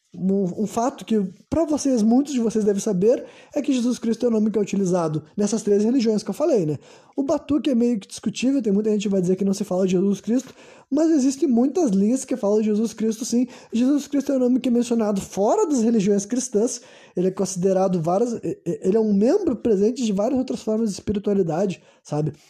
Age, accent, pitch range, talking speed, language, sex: 20-39, Brazilian, 190-240 Hz, 225 wpm, Portuguese, male